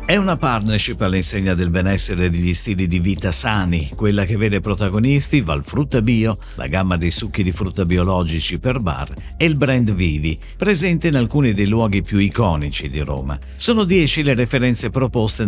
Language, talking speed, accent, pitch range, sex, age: Italian, 180 wpm, native, 90-135 Hz, male, 50-69